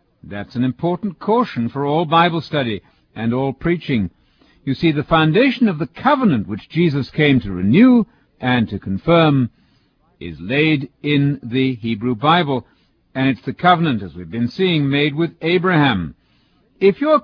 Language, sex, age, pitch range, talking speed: English, male, 60-79, 130-180 Hz, 155 wpm